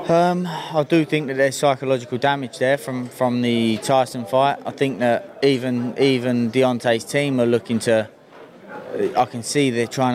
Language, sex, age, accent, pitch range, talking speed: English, male, 20-39, British, 120-150 Hz, 170 wpm